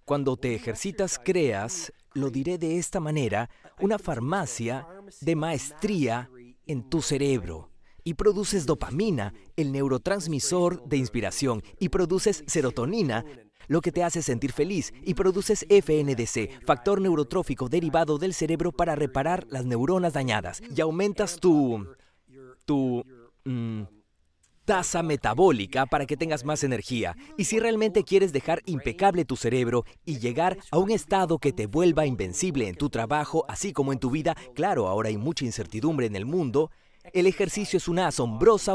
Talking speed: 145 wpm